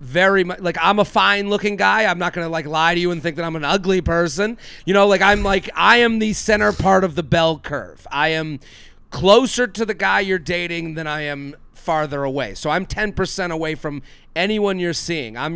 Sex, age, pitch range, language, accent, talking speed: male, 40-59, 160-195 Hz, English, American, 225 wpm